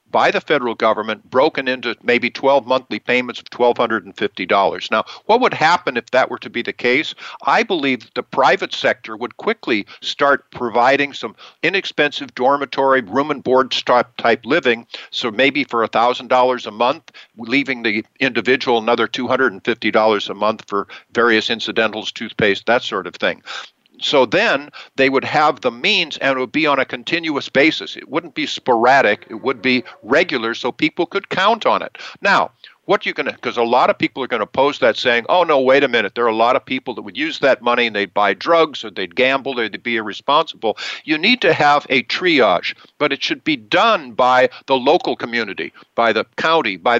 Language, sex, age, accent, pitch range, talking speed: English, male, 50-69, American, 120-145 Hz, 195 wpm